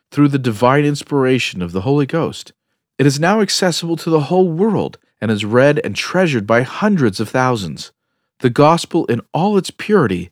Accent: American